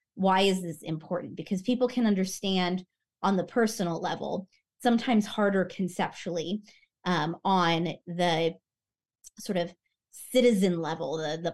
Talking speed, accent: 125 wpm, American